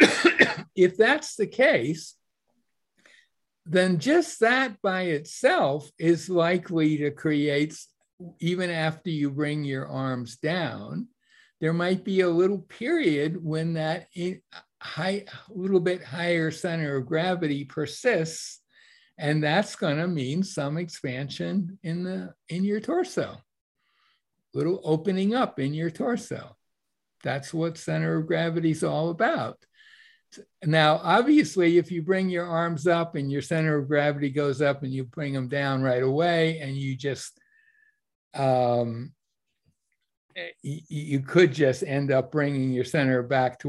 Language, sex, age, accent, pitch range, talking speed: English, male, 60-79, American, 145-195 Hz, 135 wpm